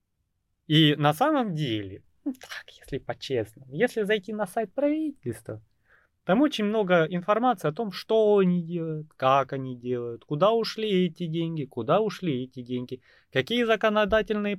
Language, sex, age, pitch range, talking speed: Russian, male, 20-39, 130-200 Hz, 140 wpm